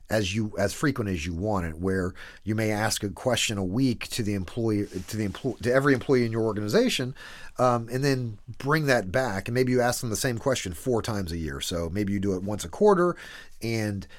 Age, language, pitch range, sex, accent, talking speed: 40-59, English, 95-130 Hz, male, American, 235 wpm